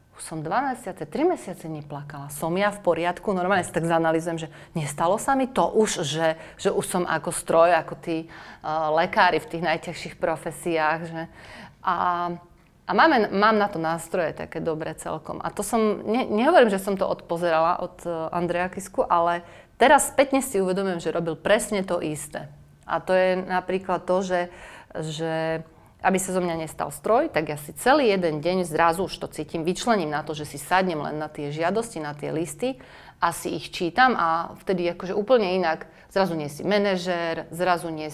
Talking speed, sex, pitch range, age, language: 185 wpm, female, 160-195 Hz, 30-49, Slovak